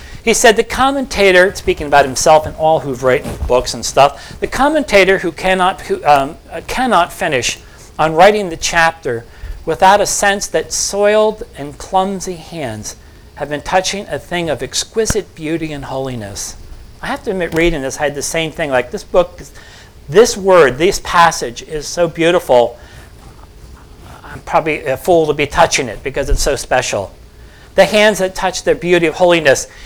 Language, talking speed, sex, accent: English, 170 wpm, male, American